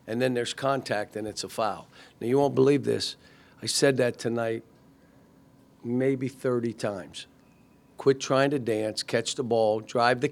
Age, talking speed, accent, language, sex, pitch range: 50-69, 170 wpm, American, English, male, 115-130 Hz